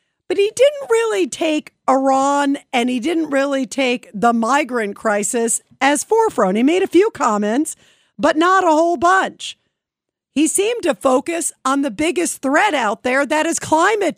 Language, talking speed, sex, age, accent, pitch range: English, 165 wpm, female, 50-69, American, 225-290 Hz